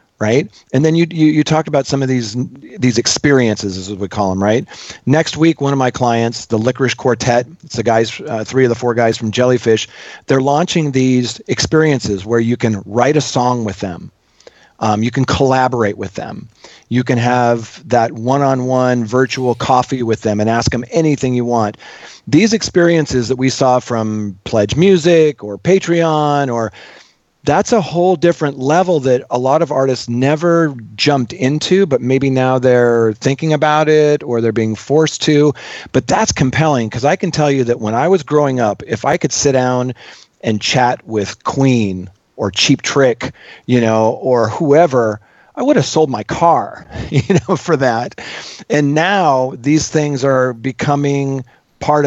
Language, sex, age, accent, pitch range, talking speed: English, male, 40-59, American, 115-150 Hz, 175 wpm